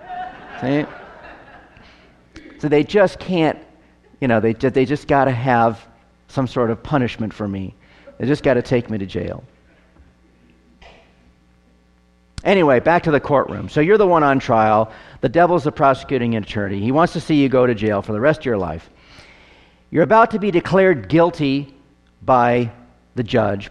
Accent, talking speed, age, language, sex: American, 165 wpm, 50-69, English, male